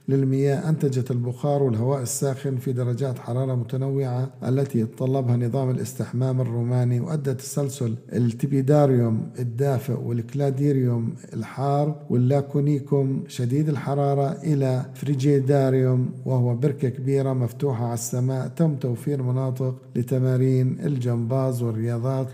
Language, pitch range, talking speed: Arabic, 125-140 Hz, 100 wpm